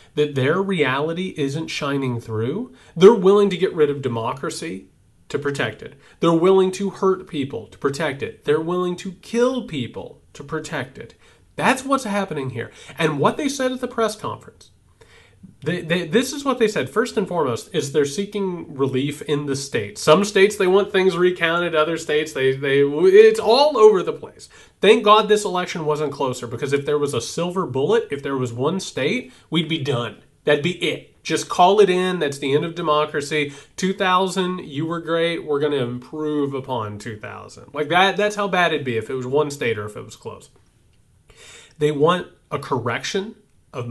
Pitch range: 140-190 Hz